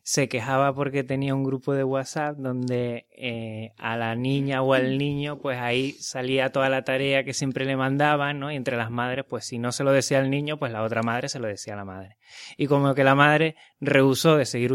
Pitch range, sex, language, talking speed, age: 120-140 Hz, male, Spanish, 230 wpm, 20-39